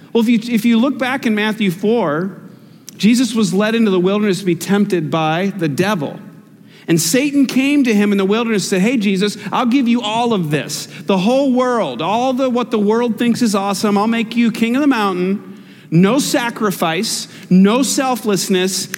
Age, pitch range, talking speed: 40-59, 165-225 Hz, 195 wpm